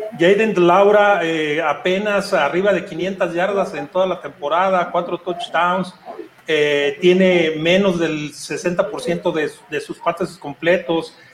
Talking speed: 130 wpm